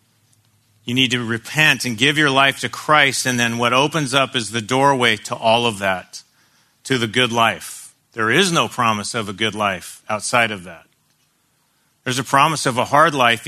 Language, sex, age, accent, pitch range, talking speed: English, male, 40-59, American, 120-150 Hz, 195 wpm